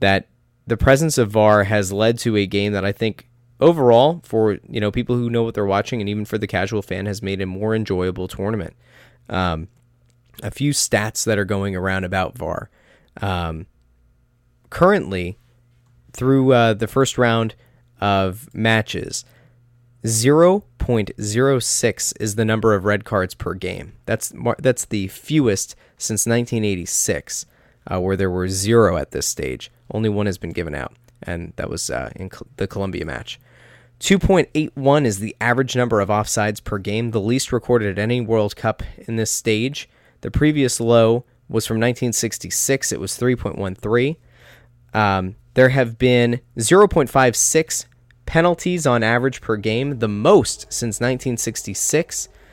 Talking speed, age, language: 150 wpm, 20-39, English